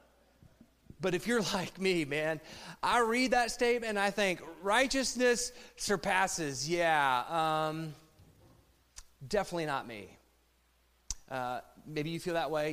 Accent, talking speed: American, 125 wpm